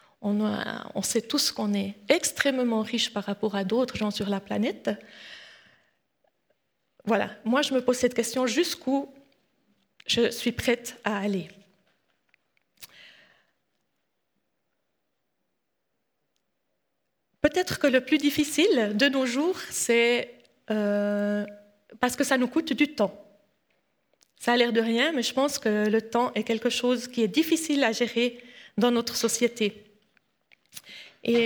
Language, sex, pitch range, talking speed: French, female, 210-255 Hz, 135 wpm